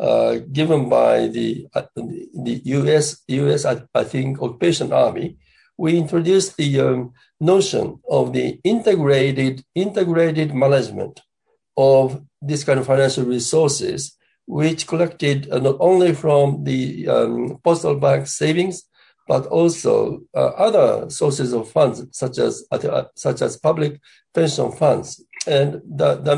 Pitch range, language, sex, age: 135-170 Hz, English, male, 60-79